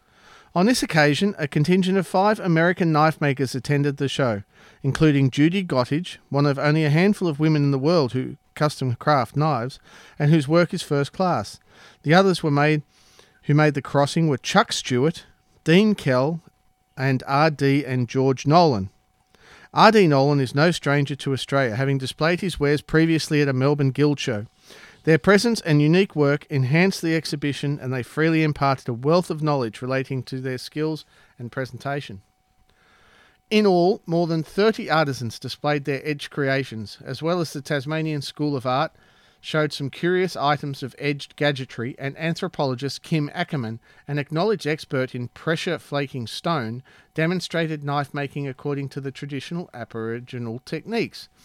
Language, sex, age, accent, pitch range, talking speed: English, male, 40-59, Australian, 135-160 Hz, 160 wpm